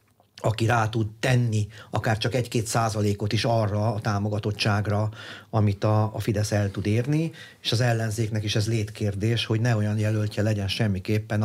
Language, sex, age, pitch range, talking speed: Hungarian, male, 40-59, 105-120 Hz, 160 wpm